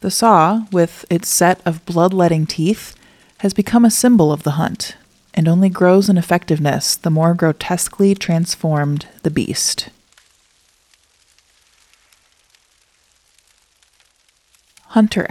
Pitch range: 155-200 Hz